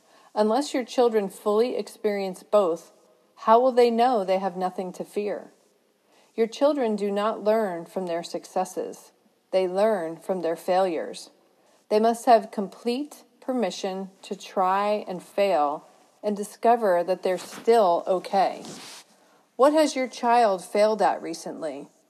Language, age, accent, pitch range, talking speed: English, 40-59, American, 190-230 Hz, 135 wpm